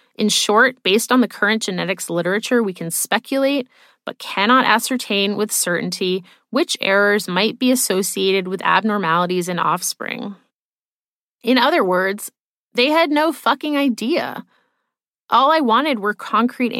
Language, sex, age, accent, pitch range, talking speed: English, female, 20-39, American, 190-245 Hz, 135 wpm